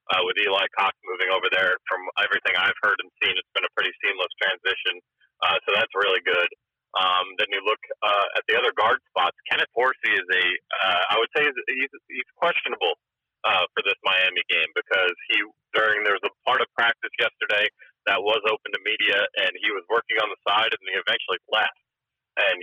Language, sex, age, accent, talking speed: English, male, 30-49, American, 205 wpm